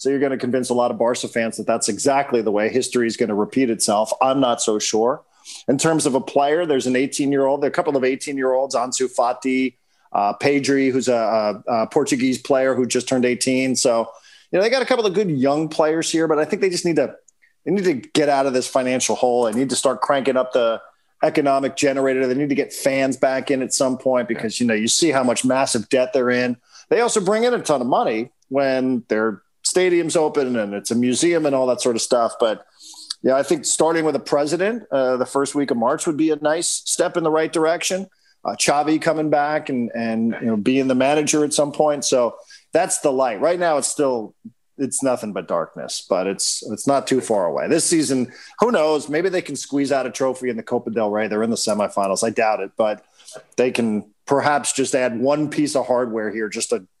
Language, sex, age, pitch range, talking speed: English, male, 40-59, 120-150 Hz, 230 wpm